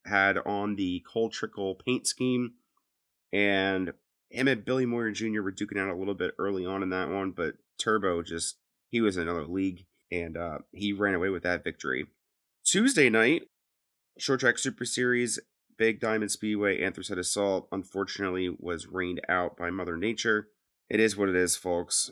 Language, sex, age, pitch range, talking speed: English, male, 30-49, 90-115 Hz, 175 wpm